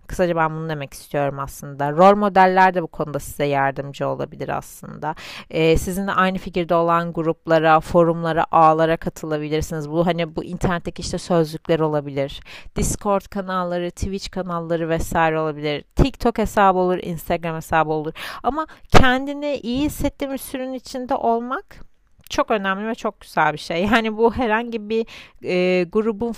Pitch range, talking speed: 155-205 Hz, 145 wpm